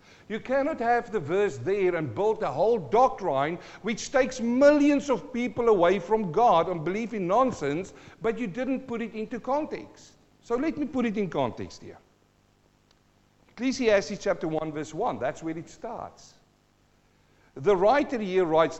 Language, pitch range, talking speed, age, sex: English, 135-220 Hz, 165 wpm, 50-69, male